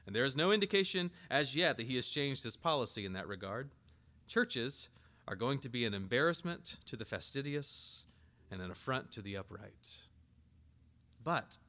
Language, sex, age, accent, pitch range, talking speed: English, male, 30-49, American, 100-140 Hz, 170 wpm